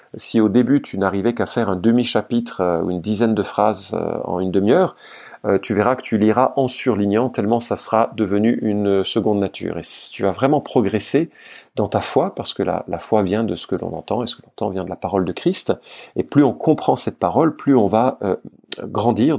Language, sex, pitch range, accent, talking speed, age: French, male, 100-130 Hz, French, 230 wpm, 40-59